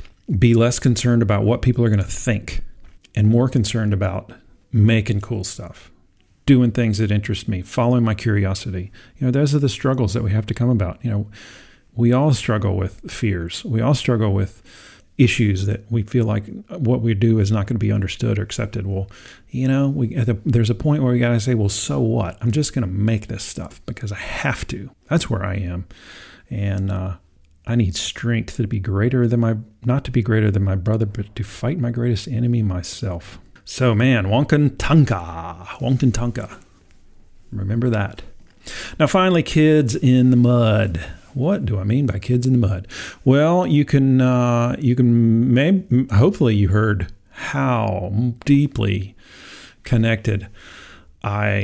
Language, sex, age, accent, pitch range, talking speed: English, male, 40-59, American, 100-125 Hz, 180 wpm